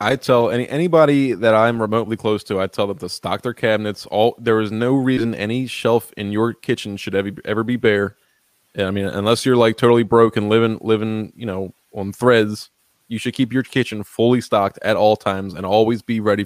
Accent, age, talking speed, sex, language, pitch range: American, 20-39, 215 wpm, male, English, 100-120 Hz